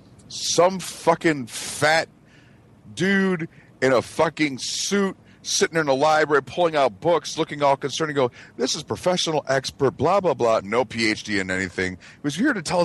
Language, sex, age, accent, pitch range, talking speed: English, male, 40-59, American, 100-145 Hz, 170 wpm